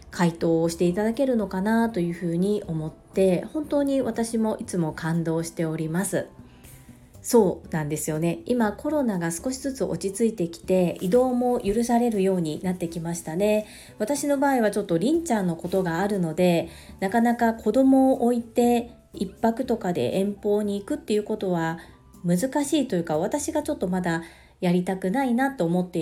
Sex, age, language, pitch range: female, 40-59, Japanese, 170-230 Hz